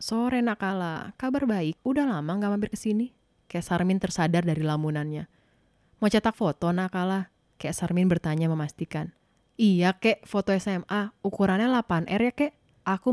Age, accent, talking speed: 20-39, native, 140 wpm